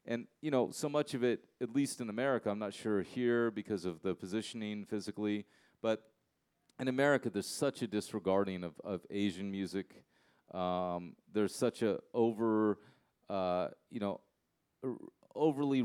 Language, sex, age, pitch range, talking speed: English, male, 30-49, 100-125 Hz, 155 wpm